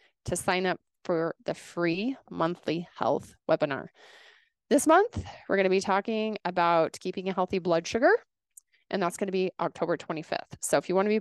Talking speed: 195 wpm